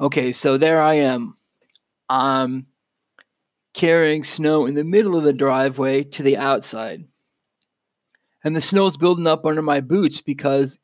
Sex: male